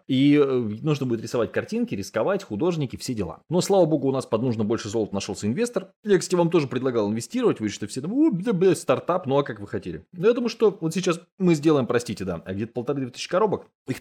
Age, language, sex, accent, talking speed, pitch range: 20-39, Russian, male, native, 220 wpm, 100-155 Hz